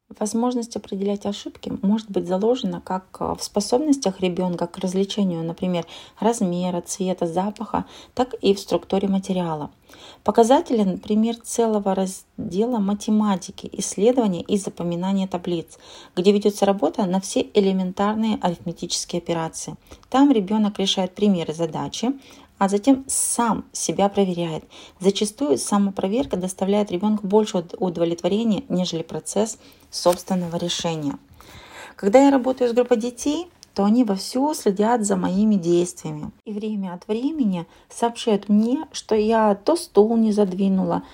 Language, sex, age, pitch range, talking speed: Russian, female, 30-49, 185-220 Hz, 125 wpm